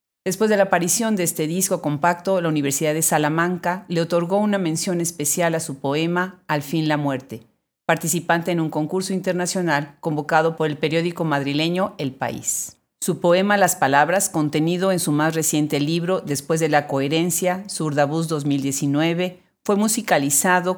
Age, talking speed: 40-59, 155 wpm